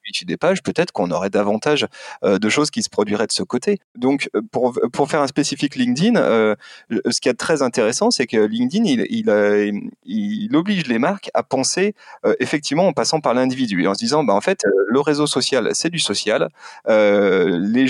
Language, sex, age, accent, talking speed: French, male, 30-49, French, 200 wpm